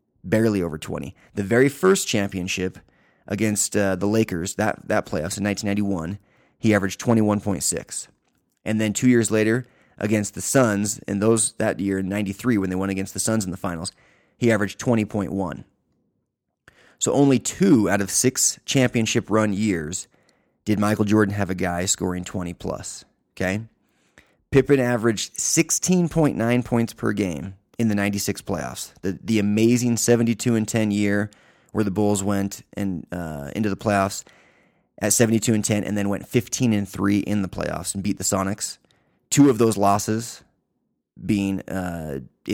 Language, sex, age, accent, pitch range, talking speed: English, male, 30-49, American, 95-115 Hz, 160 wpm